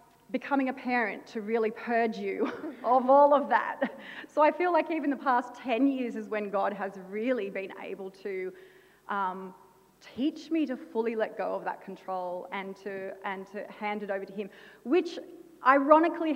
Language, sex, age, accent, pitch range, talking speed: English, female, 30-49, Australian, 210-270 Hz, 175 wpm